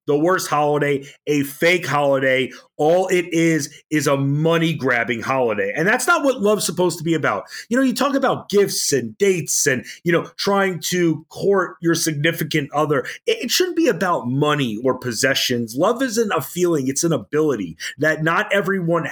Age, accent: 30-49, American